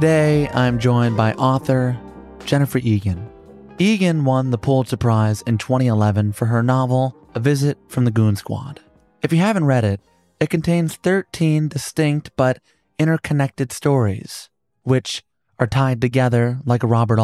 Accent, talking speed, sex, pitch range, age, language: American, 145 wpm, male, 115-145 Hz, 30-49, English